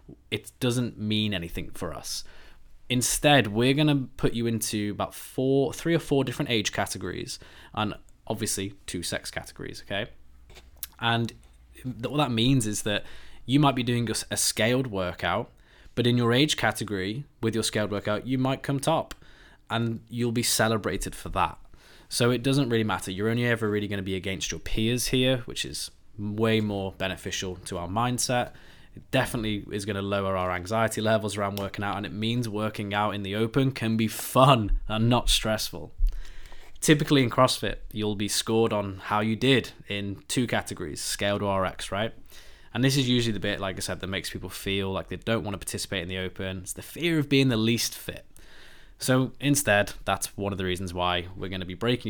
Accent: British